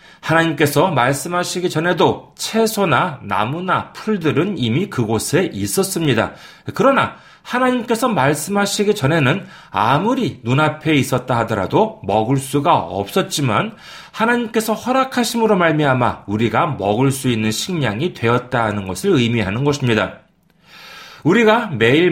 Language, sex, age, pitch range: Korean, male, 30-49, 115-180 Hz